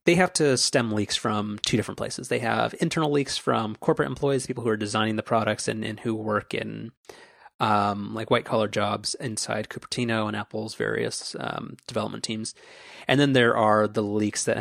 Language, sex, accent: English, male, American